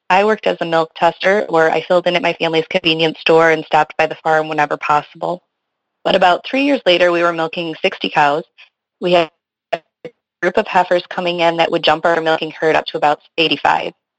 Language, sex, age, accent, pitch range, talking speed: English, female, 30-49, American, 160-185 Hz, 210 wpm